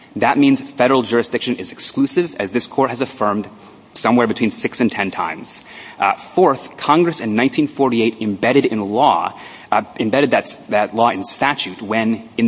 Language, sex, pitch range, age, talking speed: English, male, 115-145 Hz, 30-49, 150 wpm